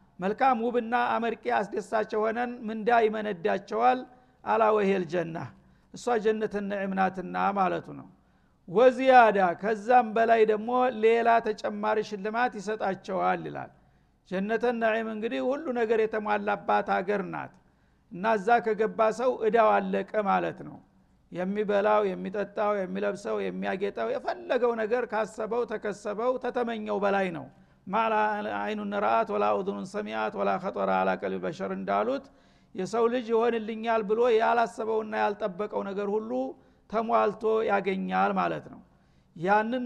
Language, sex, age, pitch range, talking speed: Amharic, male, 60-79, 205-235 Hz, 100 wpm